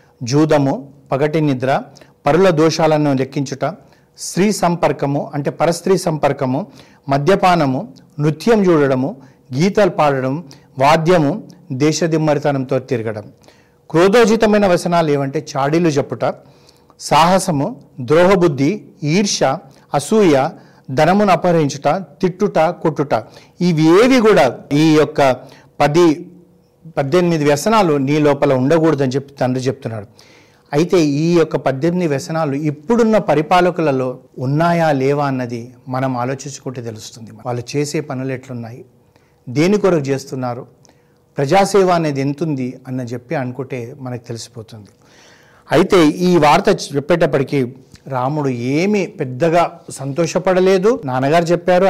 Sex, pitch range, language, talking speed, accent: male, 135-170 Hz, Telugu, 95 wpm, native